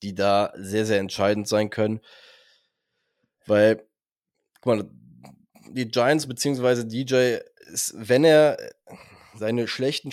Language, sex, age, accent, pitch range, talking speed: German, male, 20-39, German, 110-125 Hz, 115 wpm